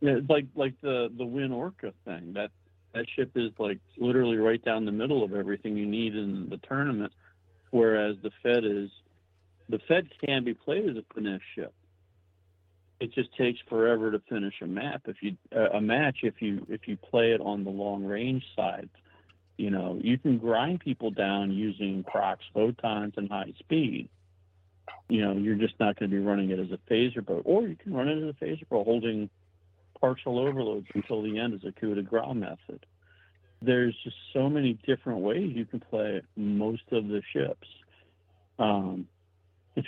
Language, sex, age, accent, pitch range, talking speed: English, male, 50-69, American, 95-120 Hz, 185 wpm